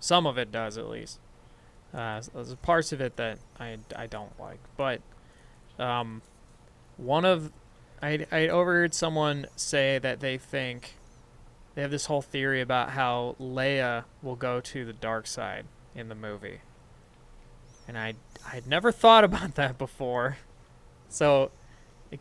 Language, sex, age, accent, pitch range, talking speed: English, male, 20-39, American, 120-140 Hz, 150 wpm